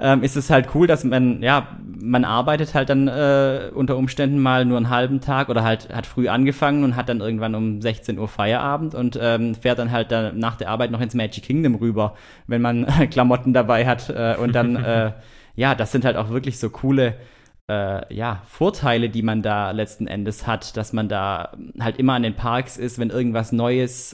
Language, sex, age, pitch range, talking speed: German, male, 20-39, 115-135 Hz, 215 wpm